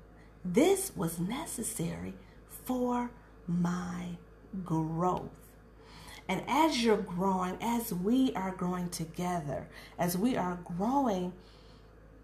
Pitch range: 180-230 Hz